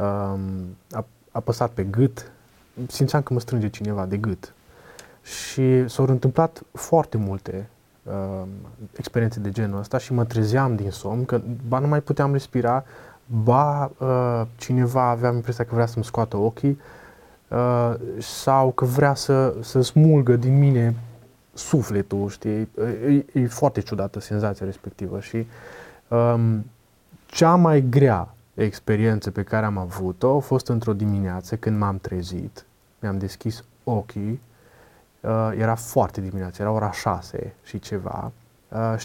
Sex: male